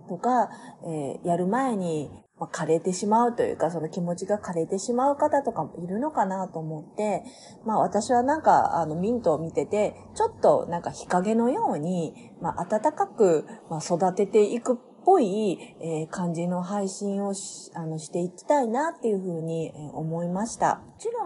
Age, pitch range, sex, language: 30-49, 170-245 Hz, female, Japanese